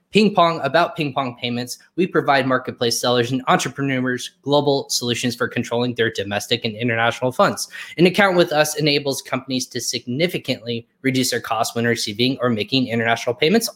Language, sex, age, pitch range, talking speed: English, male, 20-39, 120-165 Hz, 165 wpm